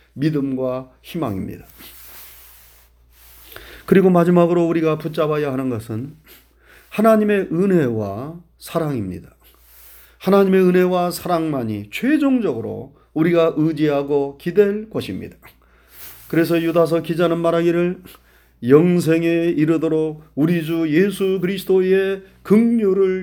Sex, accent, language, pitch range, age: male, native, Korean, 125-180 Hz, 40-59